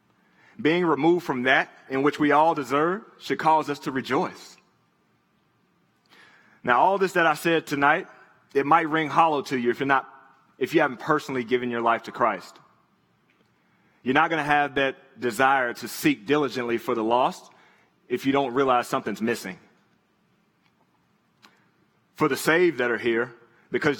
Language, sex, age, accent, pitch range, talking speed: English, male, 30-49, American, 135-155 Hz, 165 wpm